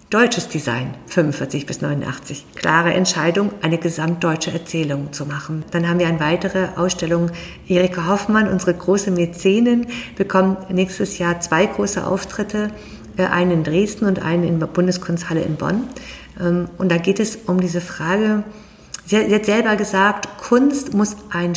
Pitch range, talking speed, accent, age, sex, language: 170-200 Hz, 145 wpm, German, 50-69, female, German